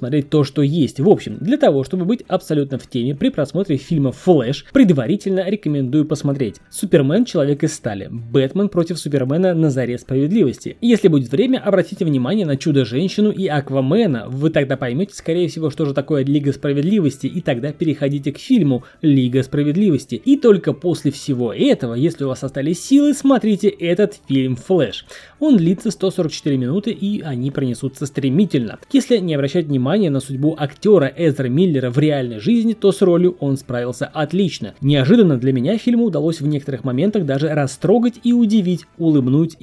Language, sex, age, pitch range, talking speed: Russian, male, 20-39, 135-190 Hz, 165 wpm